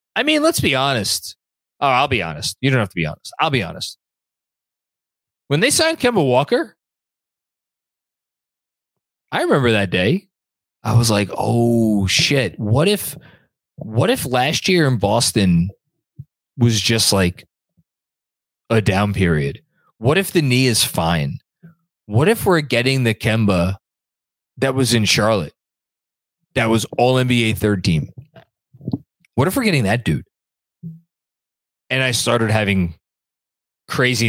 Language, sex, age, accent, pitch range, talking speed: English, male, 20-39, American, 110-165 Hz, 135 wpm